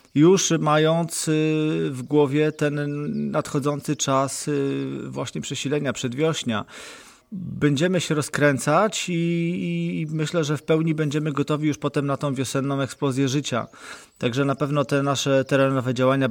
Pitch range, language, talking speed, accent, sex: 115-140 Hz, Polish, 130 wpm, native, male